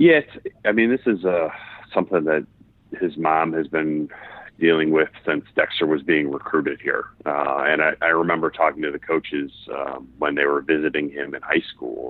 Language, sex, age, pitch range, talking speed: English, male, 30-49, 70-90 Hz, 195 wpm